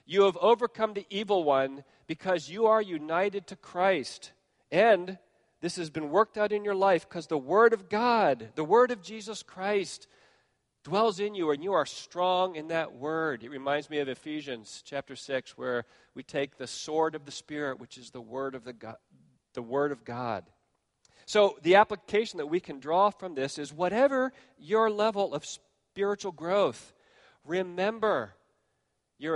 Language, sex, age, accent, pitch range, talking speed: English, male, 40-59, American, 130-190 Hz, 175 wpm